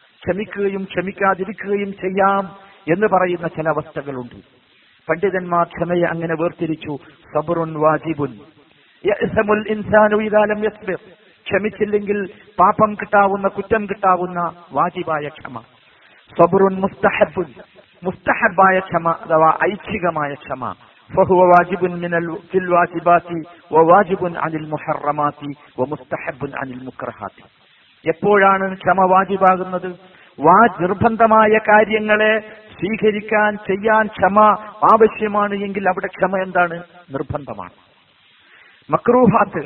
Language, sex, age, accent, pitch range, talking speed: Malayalam, male, 50-69, native, 165-210 Hz, 95 wpm